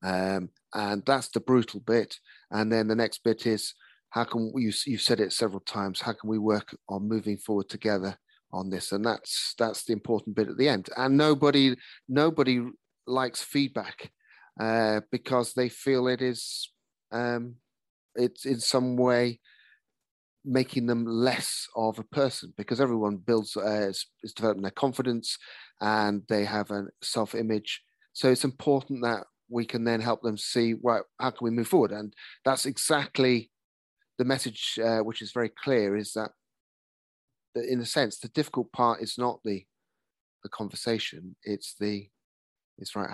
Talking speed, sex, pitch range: 165 wpm, male, 105-125 Hz